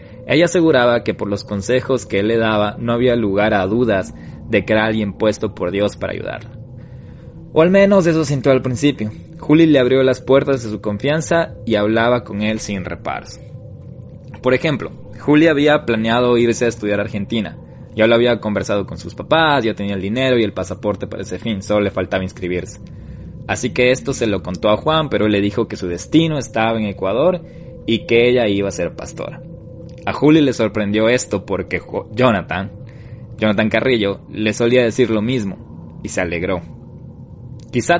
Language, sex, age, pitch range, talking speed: Spanish, male, 20-39, 100-130 Hz, 190 wpm